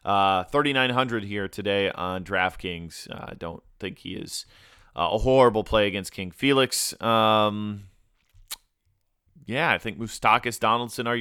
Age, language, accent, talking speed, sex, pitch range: 30-49, English, American, 150 wpm, male, 100-125 Hz